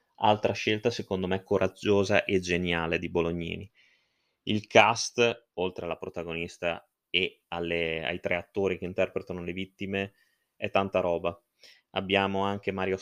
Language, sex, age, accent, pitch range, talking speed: Italian, male, 20-39, native, 85-100 Hz, 130 wpm